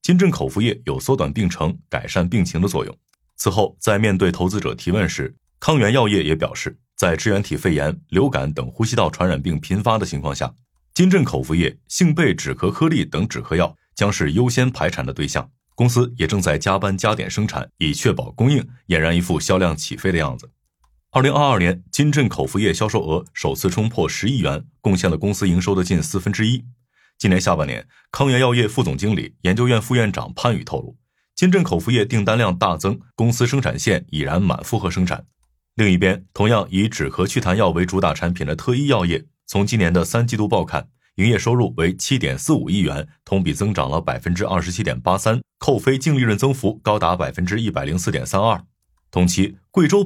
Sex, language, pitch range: male, Chinese, 90-125 Hz